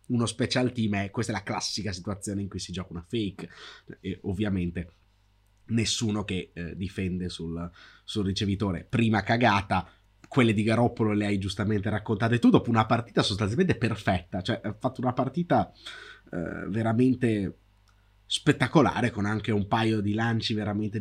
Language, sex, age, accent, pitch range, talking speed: Italian, male, 30-49, native, 95-115 Hz, 155 wpm